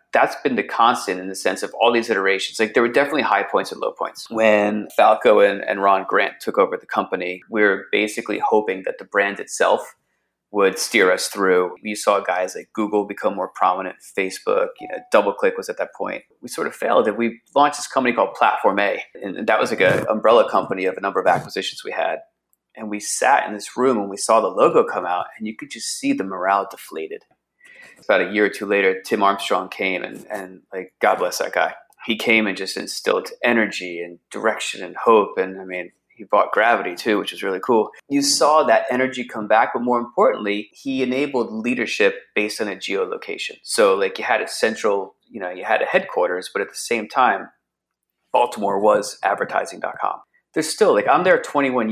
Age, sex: 30-49, male